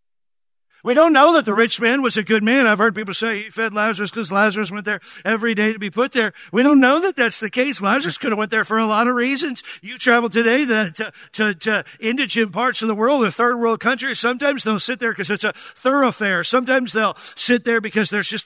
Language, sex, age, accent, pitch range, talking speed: English, male, 50-69, American, 200-245 Hz, 245 wpm